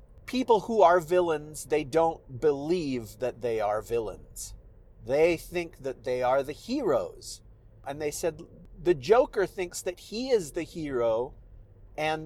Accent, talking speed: American, 145 wpm